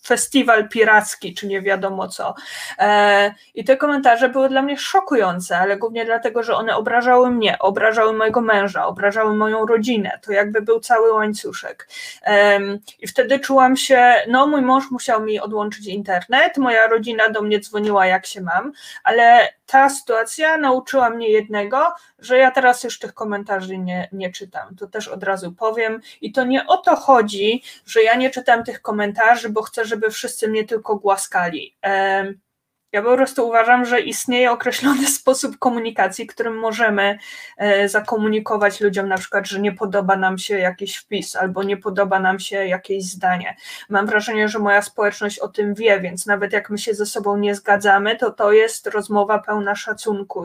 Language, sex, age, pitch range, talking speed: Polish, female, 20-39, 200-240 Hz, 170 wpm